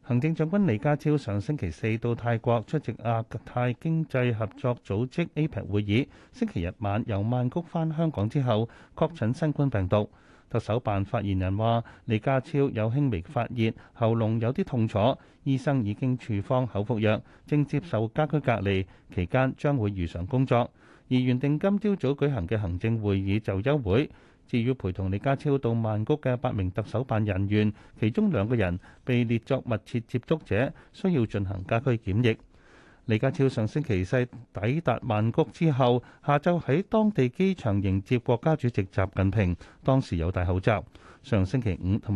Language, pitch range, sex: Chinese, 100-135 Hz, male